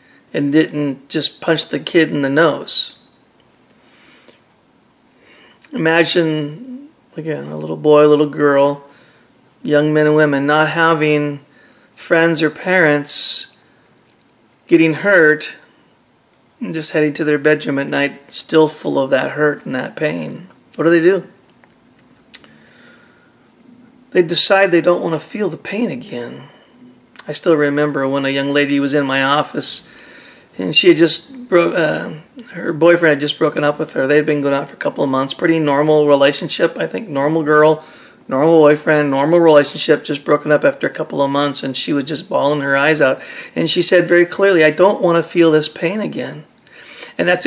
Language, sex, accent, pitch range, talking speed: English, male, American, 145-170 Hz, 170 wpm